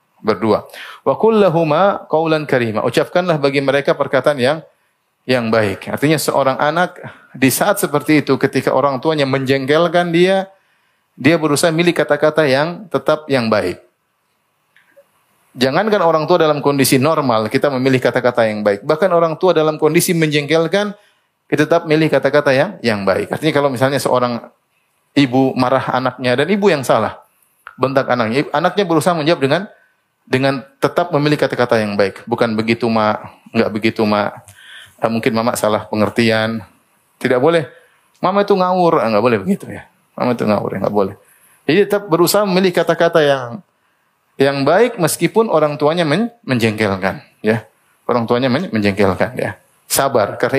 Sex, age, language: male, 30-49, Indonesian